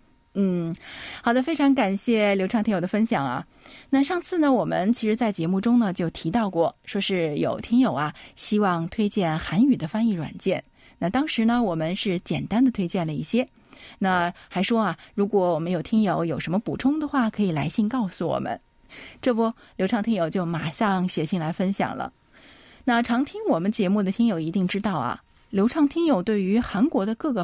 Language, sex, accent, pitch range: Chinese, female, native, 180-235 Hz